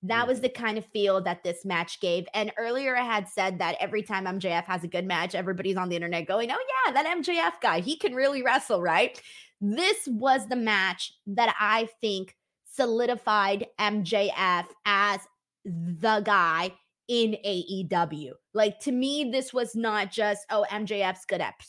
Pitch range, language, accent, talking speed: 190-240 Hz, English, American, 175 wpm